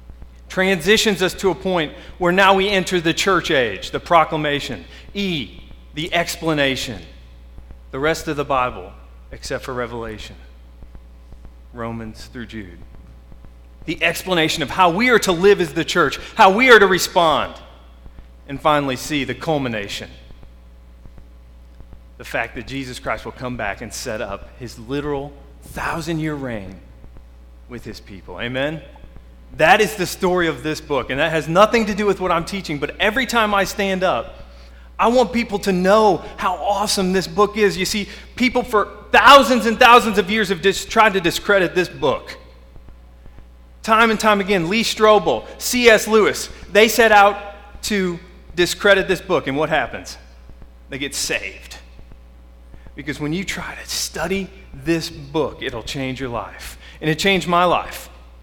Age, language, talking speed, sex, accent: 40-59, English, 160 wpm, male, American